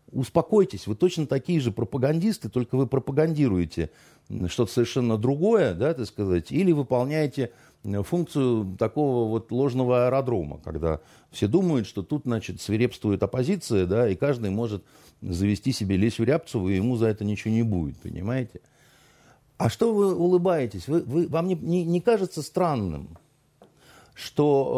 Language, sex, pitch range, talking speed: Russian, male, 100-145 Hz, 140 wpm